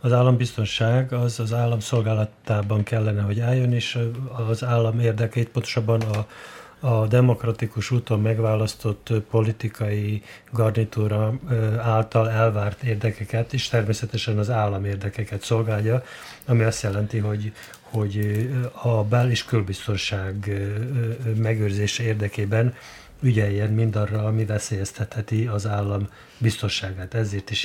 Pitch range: 105-120 Hz